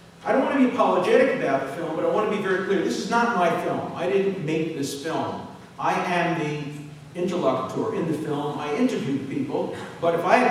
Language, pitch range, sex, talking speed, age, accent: English, 155-210 Hz, male, 230 wpm, 50-69, American